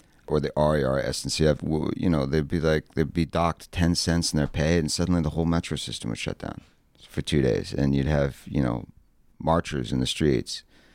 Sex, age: male, 40-59